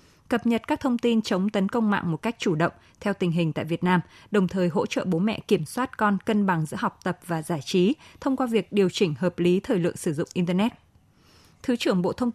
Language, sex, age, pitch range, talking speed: Vietnamese, female, 20-39, 175-220 Hz, 255 wpm